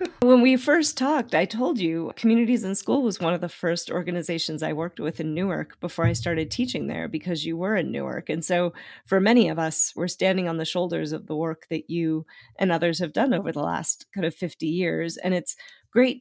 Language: English